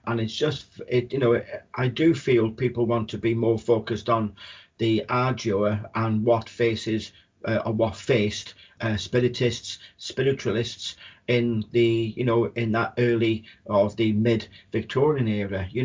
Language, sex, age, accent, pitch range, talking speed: English, male, 40-59, British, 110-120 Hz, 155 wpm